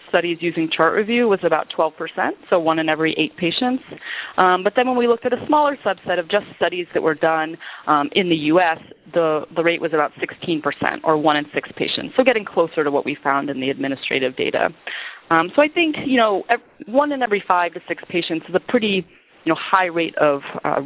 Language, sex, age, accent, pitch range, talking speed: English, female, 30-49, American, 155-215 Hz, 220 wpm